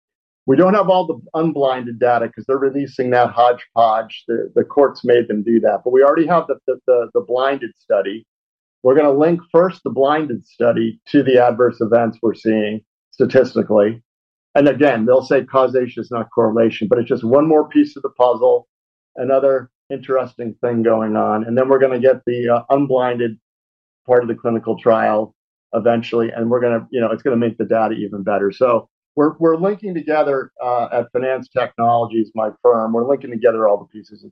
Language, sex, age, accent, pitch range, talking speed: English, male, 50-69, American, 115-155 Hz, 195 wpm